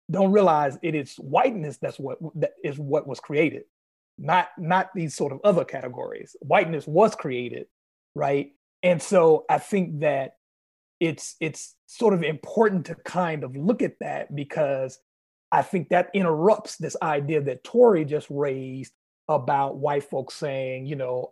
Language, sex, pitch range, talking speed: English, male, 140-180 Hz, 160 wpm